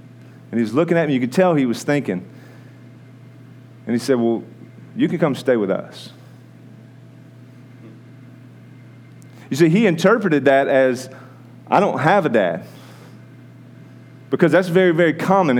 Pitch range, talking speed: 120-140 Hz, 145 wpm